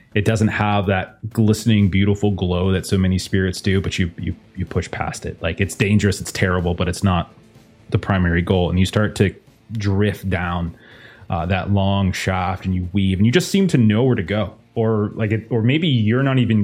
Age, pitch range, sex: 30-49, 100-120 Hz, male